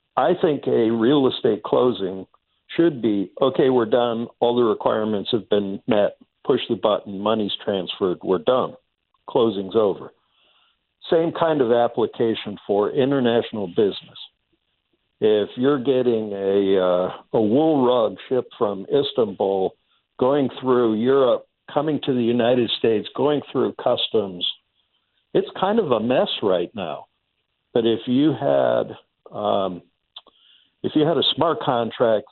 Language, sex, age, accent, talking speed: English, male, 60-79, American, 135 wpm